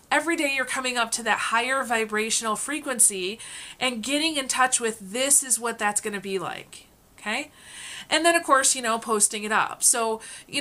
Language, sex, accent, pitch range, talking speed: English, female, American, 210-280 Hz, 190 wpm